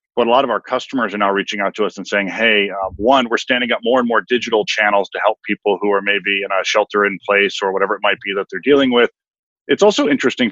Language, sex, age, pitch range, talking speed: English, male, 40-59, 100-115 Hz, 275 wpm